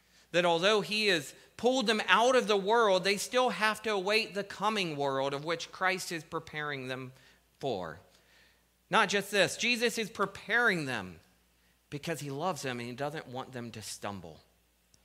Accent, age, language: American, 40-59, English